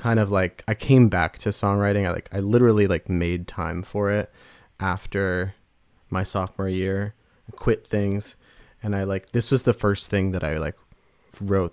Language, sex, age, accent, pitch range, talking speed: English, male, 20-39, American, 95-110 Hz, 185 wpm